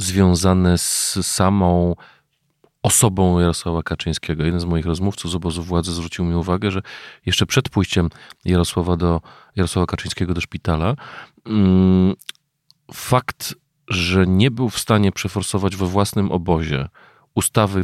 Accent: native